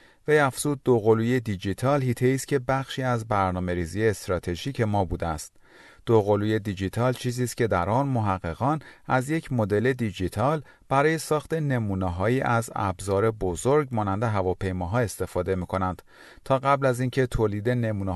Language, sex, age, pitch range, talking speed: Persian, male, 40-59, 95-135 Hz, 140 wpm